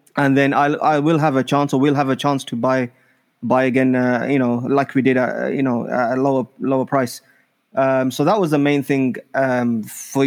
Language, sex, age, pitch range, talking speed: English, male, 20-39, 125-145 Hz, 230 wpm